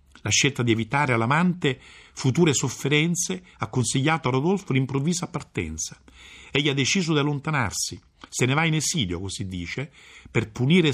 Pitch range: 90-145 Hz